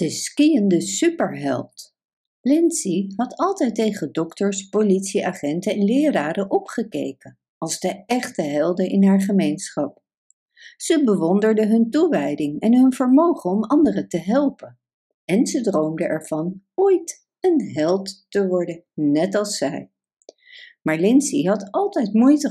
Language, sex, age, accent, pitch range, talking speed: Dutch, female, 50-69, Dutch, 170-280 Hz, 125 wpm